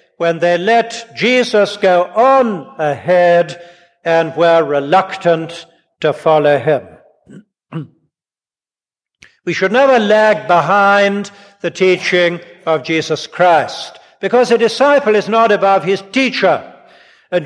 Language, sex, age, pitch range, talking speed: English, male, 60-79, 170-220 Hz, 110 wpm